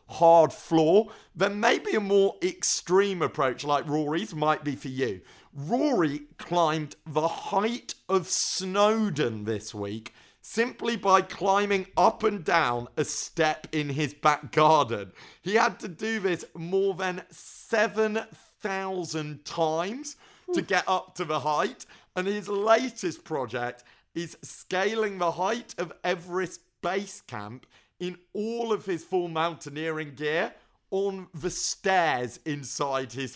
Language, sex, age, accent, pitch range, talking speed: English, male, 40-59, British, 150-200 Hz, 130 wpm